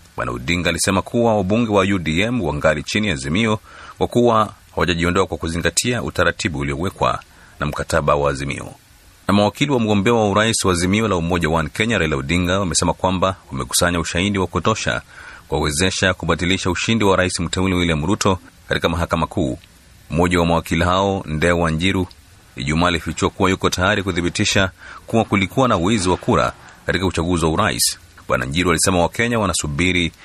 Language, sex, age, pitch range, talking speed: Swahili, male, 30-49, 80-95 Hz, 160 wpm